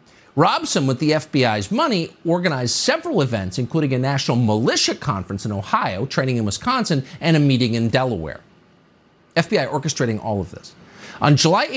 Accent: American